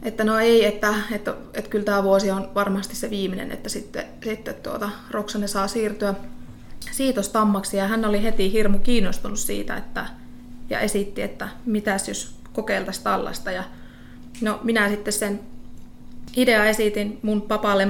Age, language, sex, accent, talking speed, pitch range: 20-39, Finnish, female, native, 150 wpm, 195-215 Hz